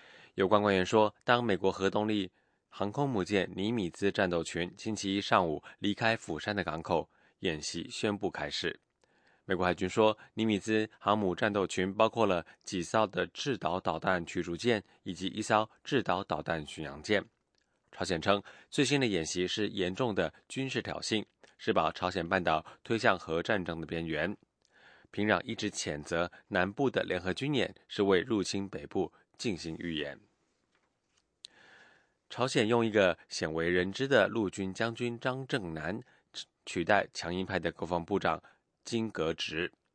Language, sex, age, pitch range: English, male, 20-39, 90-110 Hz